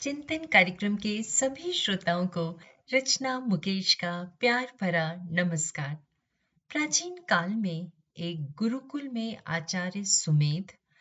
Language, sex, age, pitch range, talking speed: Hindi, female, 30-49, 160-225 Hz, 110 wpm